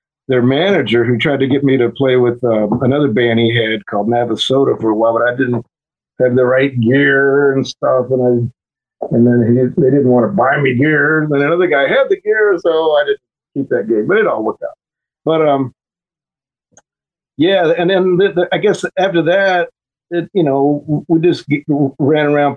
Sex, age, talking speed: male, 50-69, 205 wpm